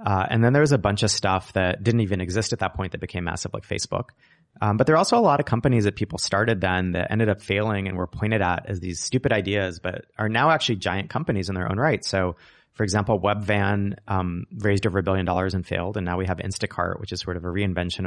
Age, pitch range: 30-49, 95-110 Hz